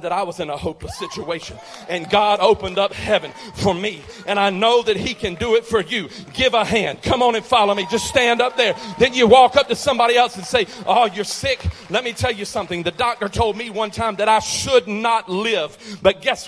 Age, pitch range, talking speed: 40-59, 215-265 Hz, 240 wpm